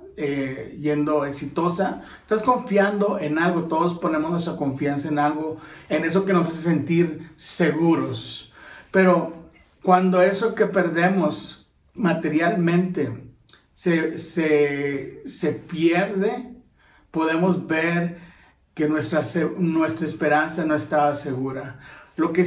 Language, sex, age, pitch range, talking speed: Spanish, male, 50-69, 155-185 Hz, 110 wpm